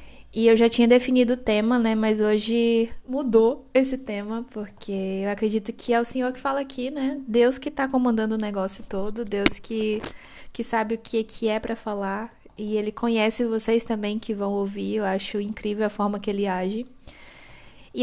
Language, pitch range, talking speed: Portuguese, 215-250 Hz, 195 wpm